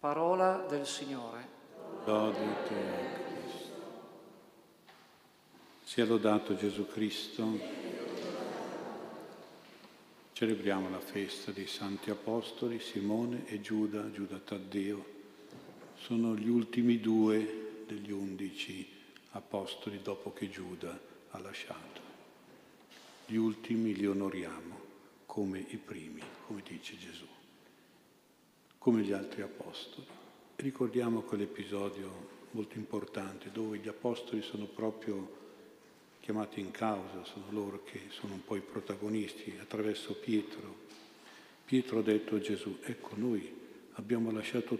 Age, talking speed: 50-69, 105 wpm